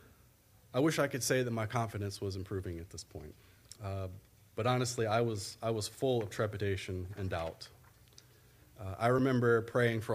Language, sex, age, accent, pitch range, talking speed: English, male, 30-49, American, 100-120 Hz, 175 wpm